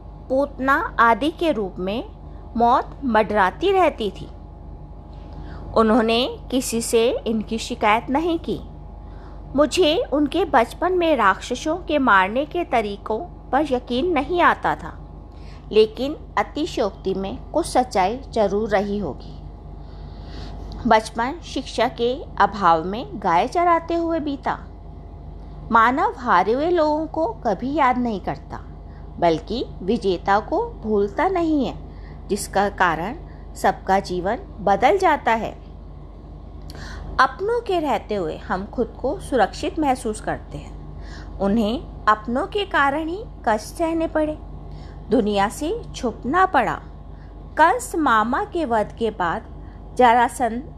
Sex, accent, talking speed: female, native, 115 wpm